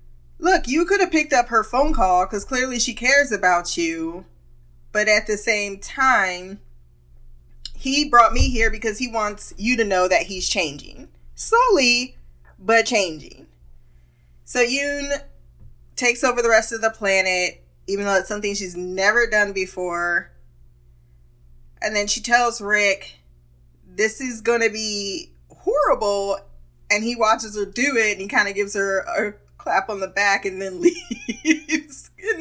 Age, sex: 20-39, female